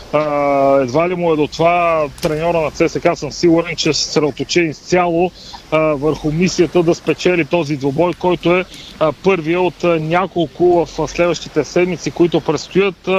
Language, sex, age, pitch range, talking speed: Bulgarian, male, 40-59, 155-180 Hz, 145 wpm